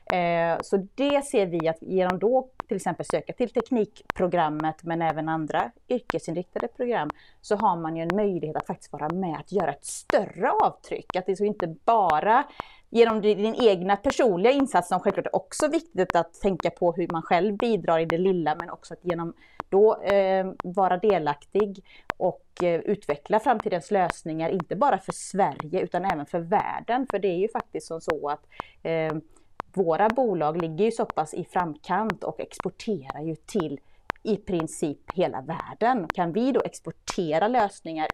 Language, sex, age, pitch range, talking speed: Swedish, female, 30-49, 165-215 Hz, 170 wpm